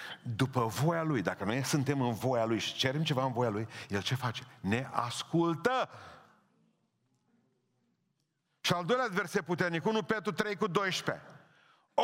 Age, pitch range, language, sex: 50-69, 115-155 Hz, Romanian, male